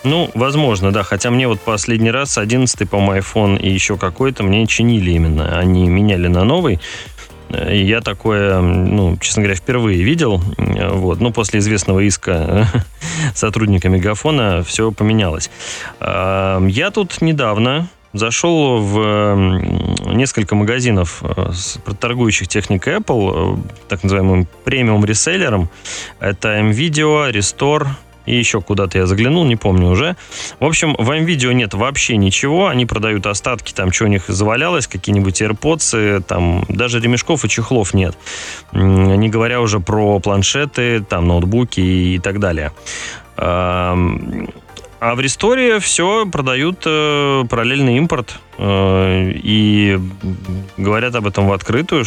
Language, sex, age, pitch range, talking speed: Russian, male, 20-39, 95-120 Hz, 125 wpm